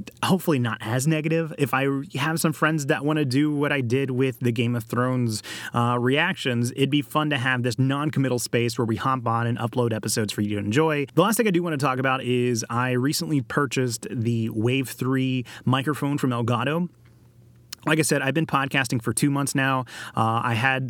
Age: 30-49